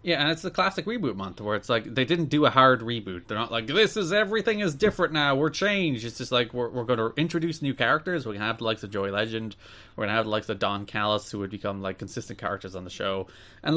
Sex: male